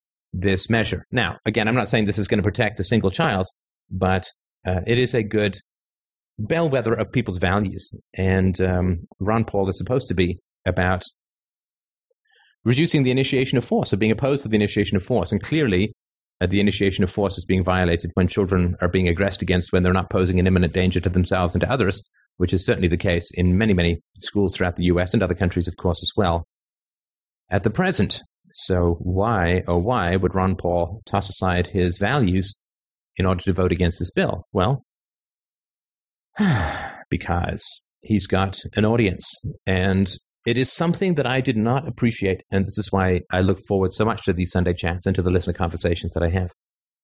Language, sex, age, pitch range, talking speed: English, male, 30-49, 90-110 Hz, 195 wpm